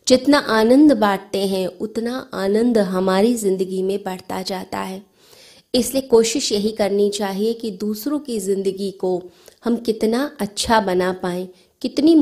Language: Hindi